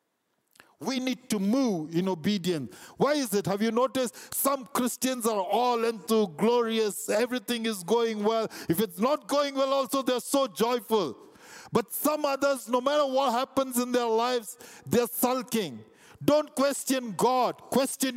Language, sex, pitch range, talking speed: English, male, 205-260 Hz, 155 wpm